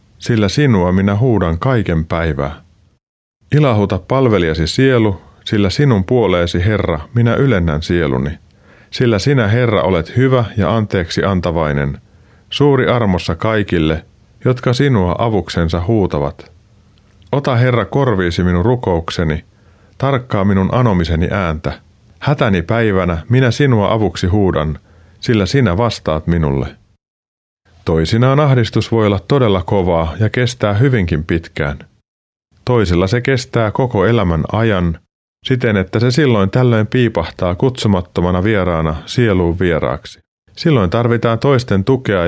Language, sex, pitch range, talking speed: Finnish, male, 90-120 Hz, 115 wpm